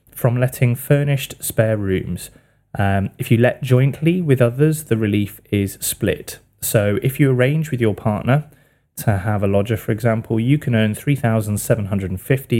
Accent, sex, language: British, male, English